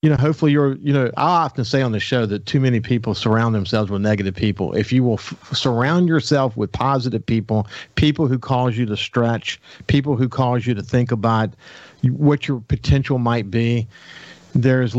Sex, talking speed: male, 195 wpm